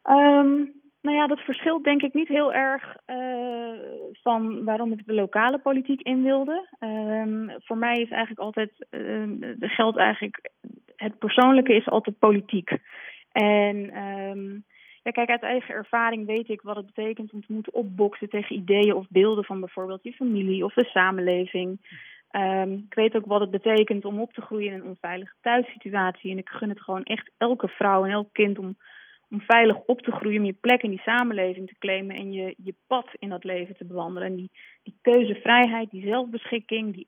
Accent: Dutch